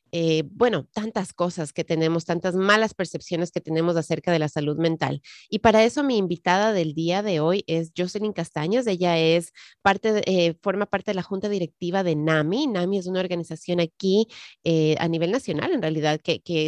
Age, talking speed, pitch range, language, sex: 30-49, 195 wpm, 165-200 Hz, Spanish, female